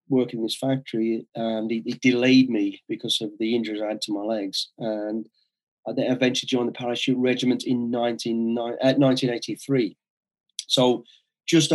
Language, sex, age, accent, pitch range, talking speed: English, male, 30-49, British, 120-145 Hz, 165 wpm